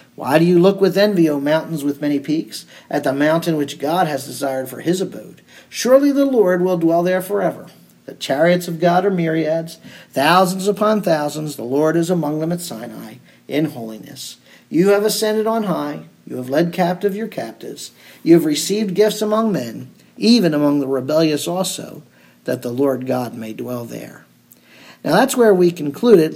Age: 50-69